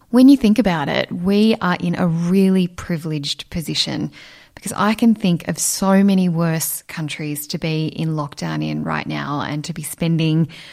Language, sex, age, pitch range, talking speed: English, female, 10-29, 155-180 Hz, 180 wpm